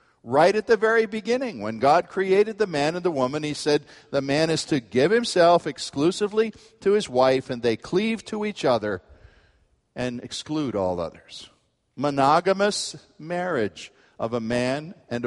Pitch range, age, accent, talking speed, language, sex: 130-180 Hz, 50-69, American, 160 wpm, English, male